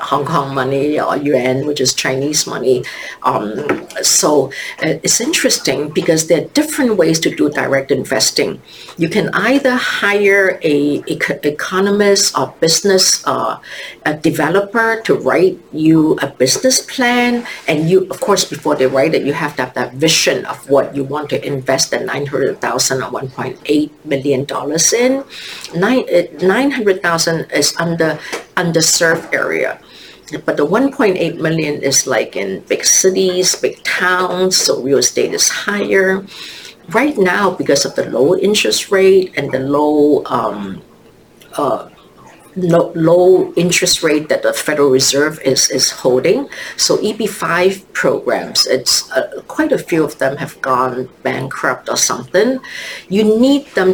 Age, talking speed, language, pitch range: 50-69, 150 wpm, English, 145-200 Hz